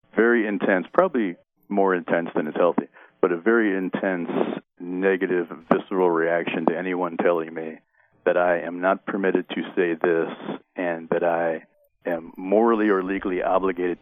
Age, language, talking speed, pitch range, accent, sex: 40-59, English, 150 wpm, 85-105 Hz, American, male